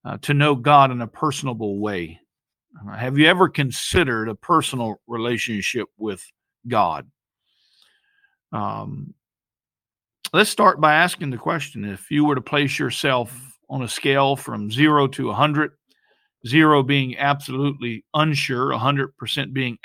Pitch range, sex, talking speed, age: 130-175 Hz, male, 135 wpm, 50-69